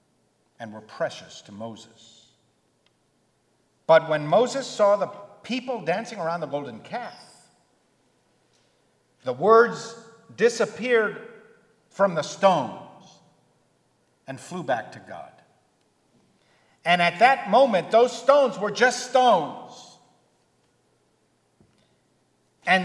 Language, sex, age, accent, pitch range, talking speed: English, male, 50-69, American, 140-230 Hz, 95 wpm